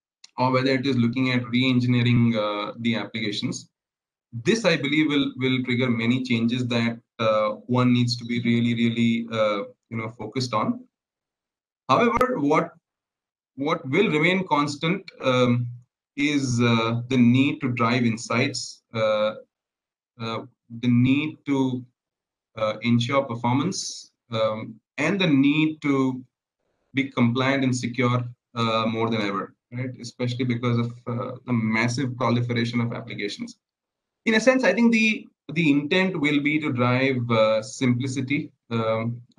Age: 30-49